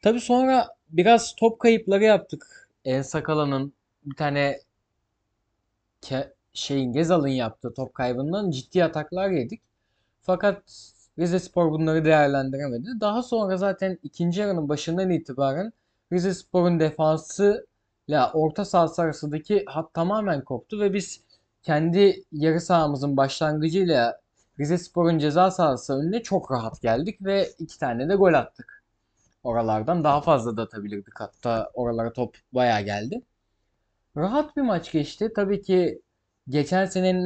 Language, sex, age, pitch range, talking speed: Turkish, male, 20-39, 125-185 Hz, 125 wpm